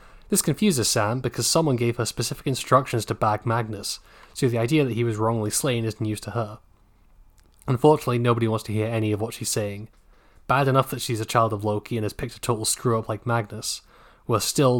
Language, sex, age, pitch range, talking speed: English, male, 20-39, 105-125 Hz, 215 wpm